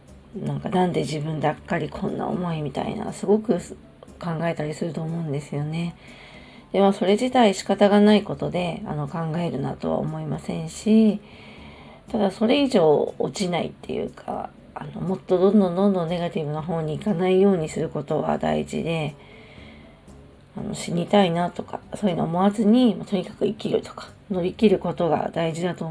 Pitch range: 155-205 Hz